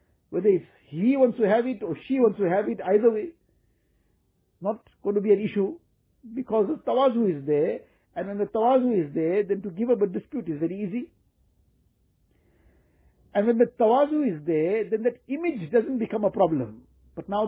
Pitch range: 190-250 Hz